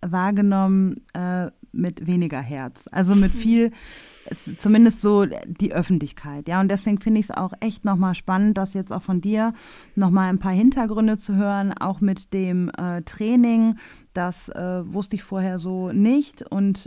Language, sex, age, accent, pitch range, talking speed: German, female, 30-49, German, 180-210 Hz, 165 wpm